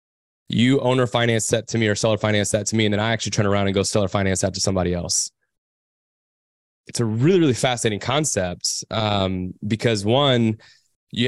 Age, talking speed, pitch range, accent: 20-39, 190 wpm, 100-115 Hz, American